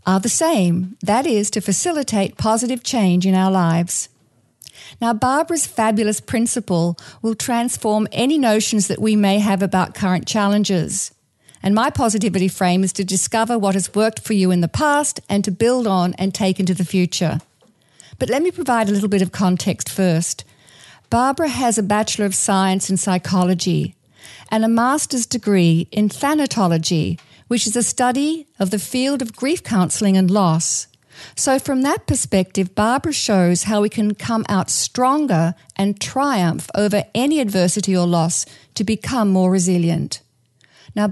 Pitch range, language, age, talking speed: 180-230 Hz, English, 50-69, 160 wpm